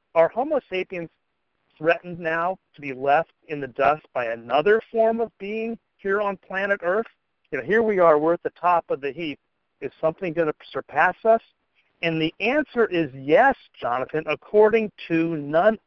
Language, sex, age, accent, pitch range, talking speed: English, male, 50-69, American, 145-205 Hz, 170 wpm